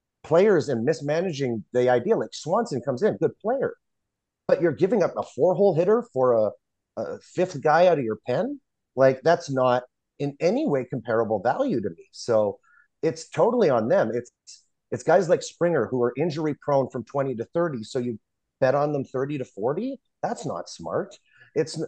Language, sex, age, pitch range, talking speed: English, male, 30-49, 130-180 Hz, 185 wpm